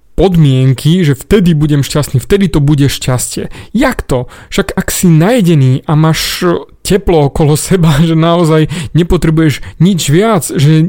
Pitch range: 130-165 Hz